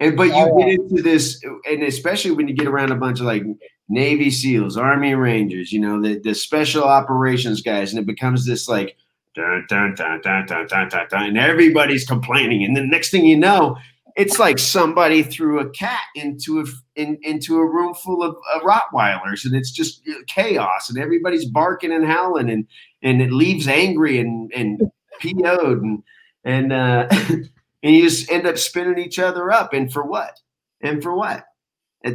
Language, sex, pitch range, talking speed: English, male, 125-155 Hz, 190 wpm